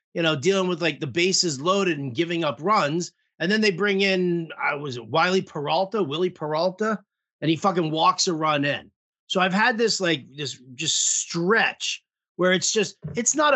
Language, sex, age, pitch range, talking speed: English, male, 30-49, 155-200 Hz, 180 wpm